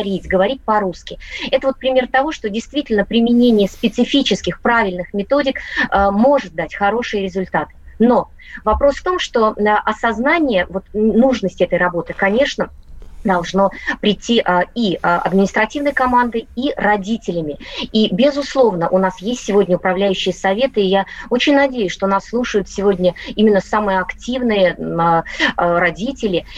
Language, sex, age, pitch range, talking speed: Russian, female, 20-39, 190-250 Hz, 125 wpm